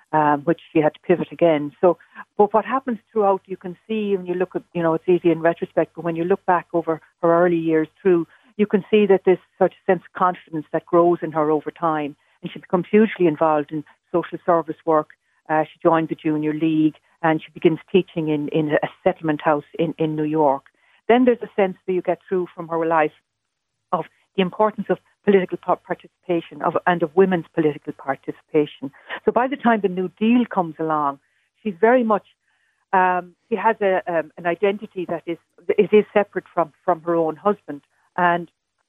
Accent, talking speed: Irish, 200 wpm